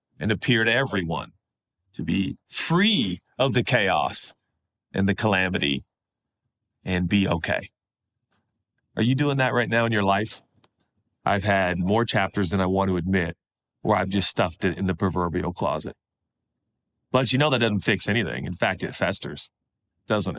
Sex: male